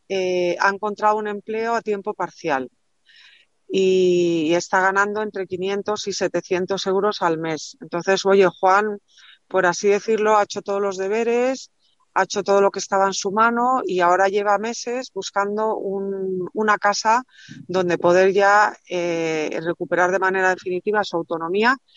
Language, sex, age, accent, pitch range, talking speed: Spanish, female, 40-59, Spanish, 180-215 Hz, 155 wpm